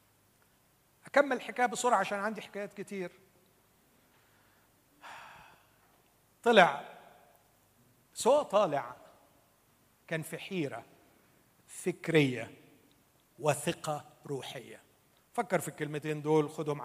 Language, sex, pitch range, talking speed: Arabic, male, 150-245 Hz, 75 wpm